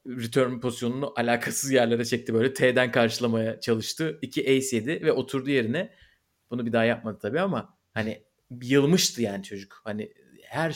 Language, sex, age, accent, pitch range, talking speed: Turkish, male, 30-49, native, 115-140 Hz, 145 wpm